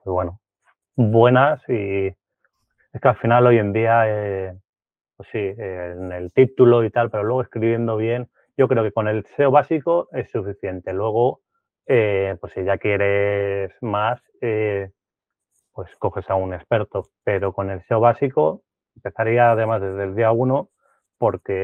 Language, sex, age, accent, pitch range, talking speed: Spanish, male, 30-49, Spanish, 100-120 Hz, 160 wpm